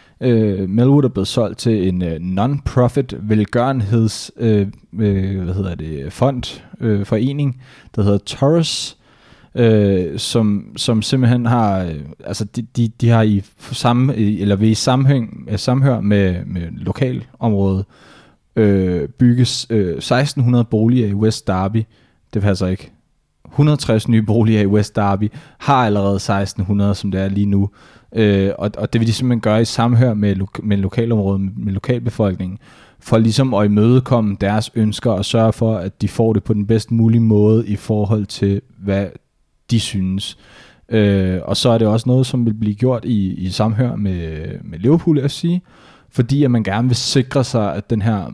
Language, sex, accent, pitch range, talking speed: Danish, male, native, 100-120 Hz, 165 wpm